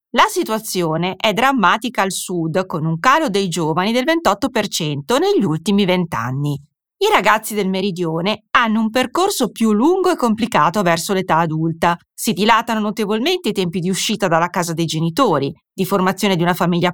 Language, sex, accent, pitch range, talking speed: Italian, female, native, 170-230 Hz, 165 wpm